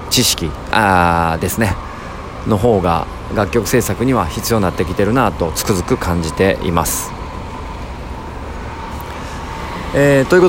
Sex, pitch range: male, 95-125 Hz